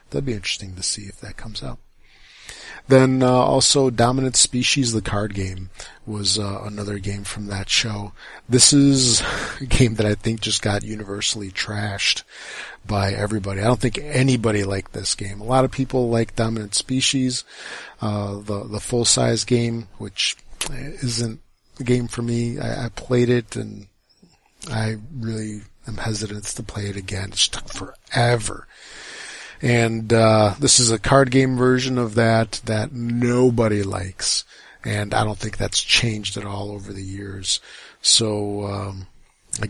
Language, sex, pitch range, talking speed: English, male, 100-125 Hz, 160 wpm